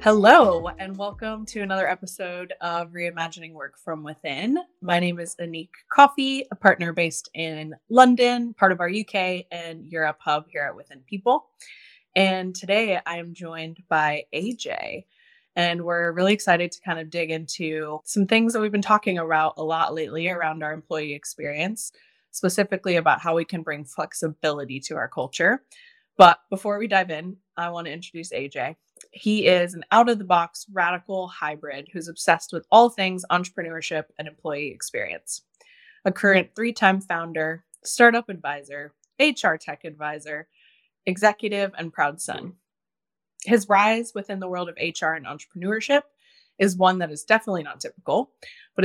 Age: 20-39